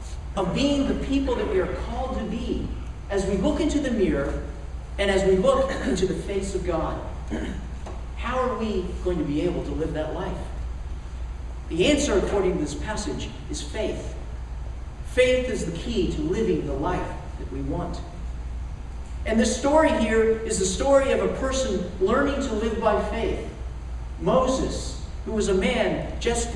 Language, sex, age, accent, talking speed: English, male, 50-69, American, 170 wpm